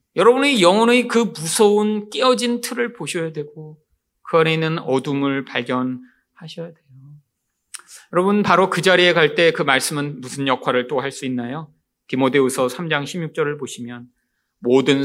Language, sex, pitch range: Korean, male, 130-210 Hz